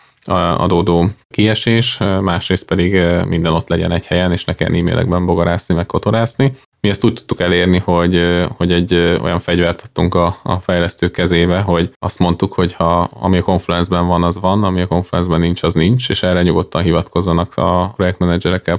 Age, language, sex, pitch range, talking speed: 20-39, Hungarian, male, 85-95 Hz, 175 wpm